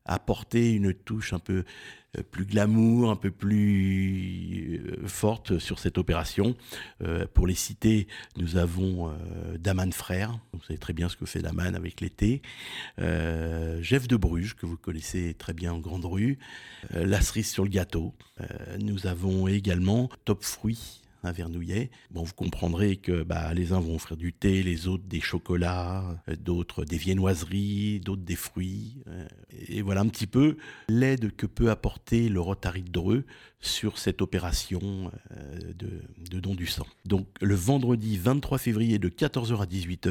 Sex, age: male, 50-69